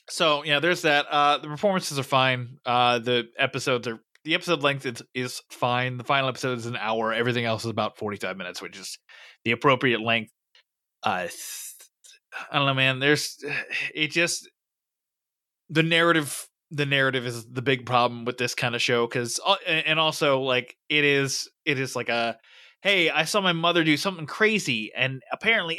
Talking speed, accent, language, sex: 180 wpm, American, English, male